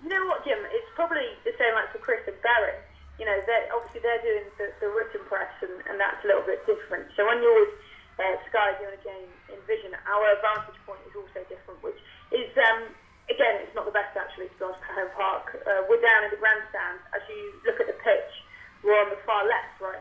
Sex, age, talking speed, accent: female, 20-39, 235 wpm, British